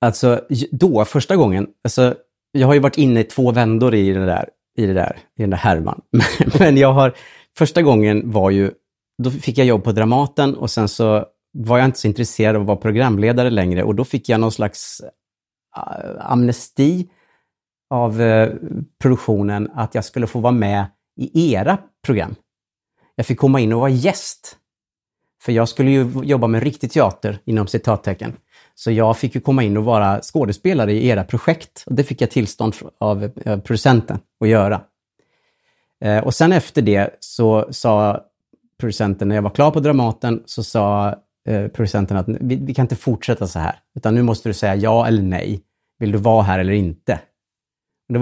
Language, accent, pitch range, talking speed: Swedish, Norwegian, 105-130 Hz, 180 wpm